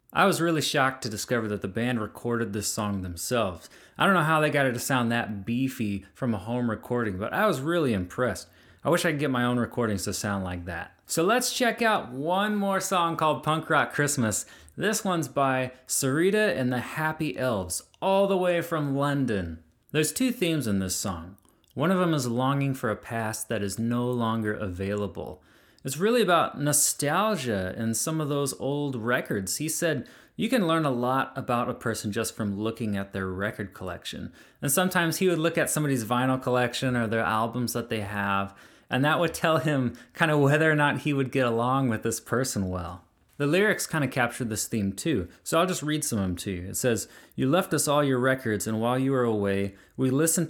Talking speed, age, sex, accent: 215 wpm, 30-49, male, American